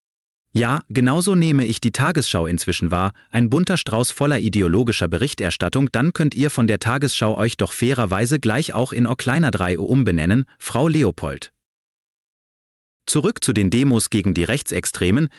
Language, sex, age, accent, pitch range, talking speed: German, male, 30-49, German, 105-145 Hz, 150 wpm